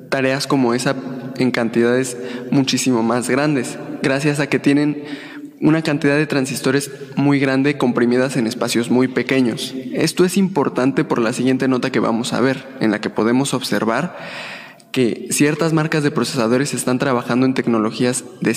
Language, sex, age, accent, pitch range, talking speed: Spanish, male, 20-39, Mexican, 125-140 Hz, 160 wpm